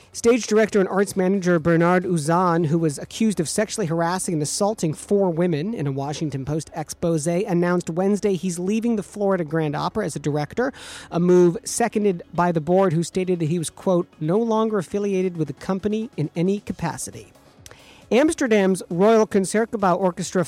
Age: 40-59